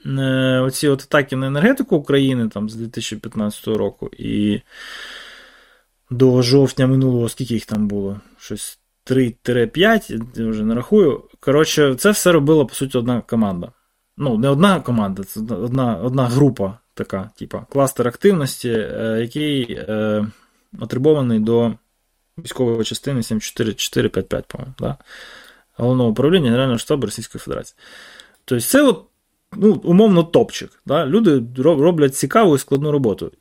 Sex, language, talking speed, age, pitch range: male, Ukrainian, 130 wpm, 20-39, 115-140 Hz